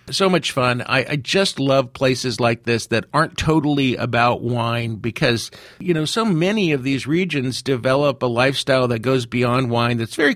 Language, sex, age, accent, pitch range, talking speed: English, male, 50-69, American, 125-155 Hz, 185 wpm